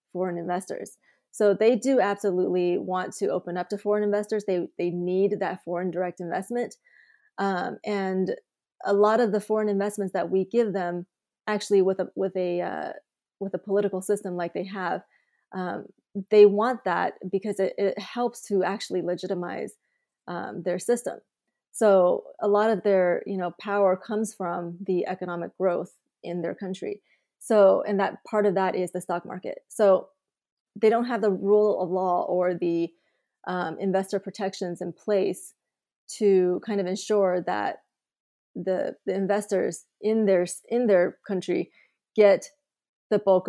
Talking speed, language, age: 160 wpm, English, 20-39